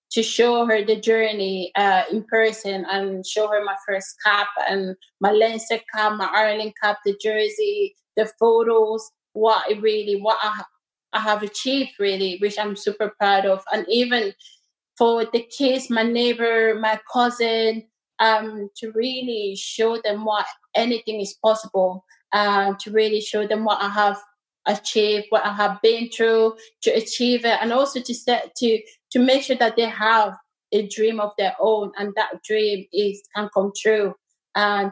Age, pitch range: 30-49, 200-225 Hz